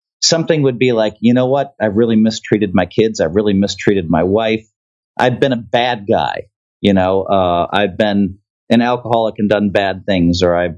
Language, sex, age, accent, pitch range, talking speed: English, male, 40-59, American, 100-125 Hz, 205 wpm